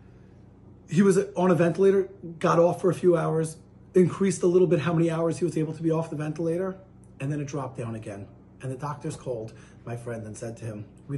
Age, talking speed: 30-49, 230 wpm